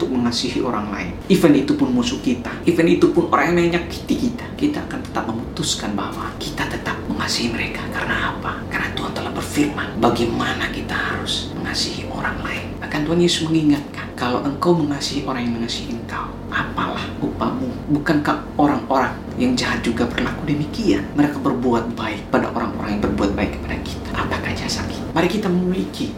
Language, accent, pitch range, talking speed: Indonesian, native, 120-175 Hz, 165 wpm